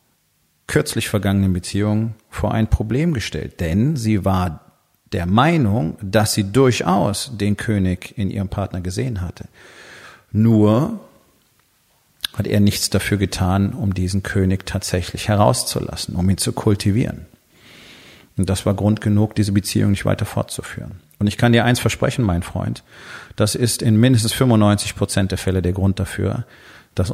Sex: male